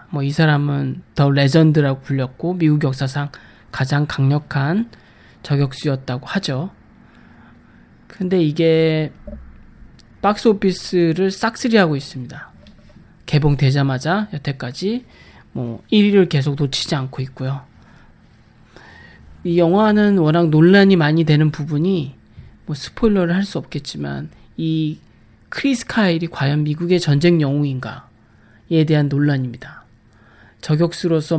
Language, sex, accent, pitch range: Korean, male, native, 135-175 Hz